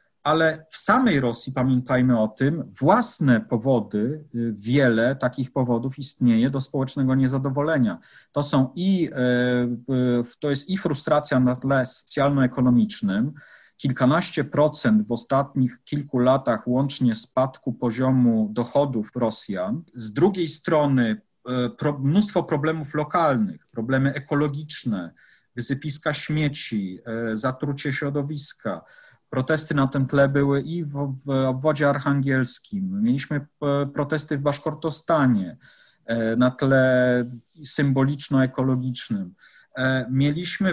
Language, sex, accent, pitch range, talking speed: Polish, male, native, 125-150 Hz, 95 wpm